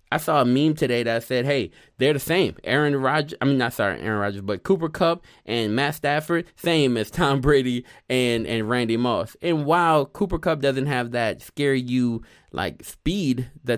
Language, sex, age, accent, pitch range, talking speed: English, male, 20-39, American, 105-145 Hz, 195 wpm